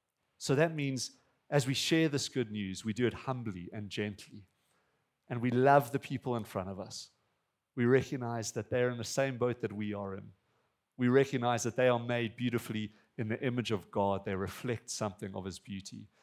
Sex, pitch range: male, 115-165 Hz